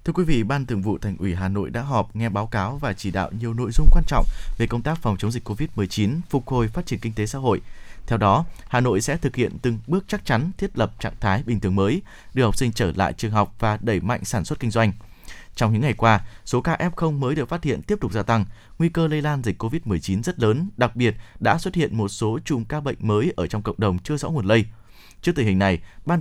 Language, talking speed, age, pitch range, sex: Vietnamese, 270 wpm, 20-39, 105-145 Hz, male